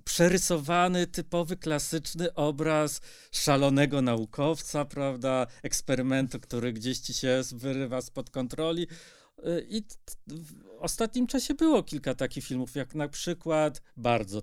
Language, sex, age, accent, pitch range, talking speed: Polish, male, 40-59, native, 135-175 Hz, 110 wpm